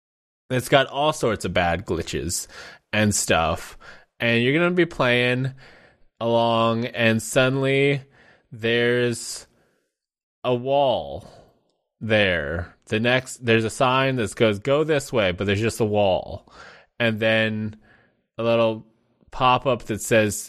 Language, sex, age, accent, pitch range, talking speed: English, male, 20-39, American, 105-130 Hz, 130 wpm